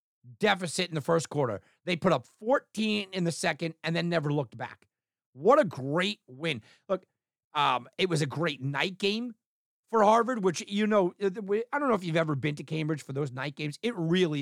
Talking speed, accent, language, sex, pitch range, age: 205 wpm, American, English, male, 145-210 Hz, 40-59